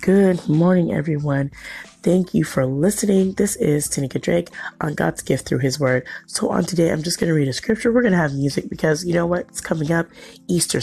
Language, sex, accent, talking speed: English, female, American, 215 wpm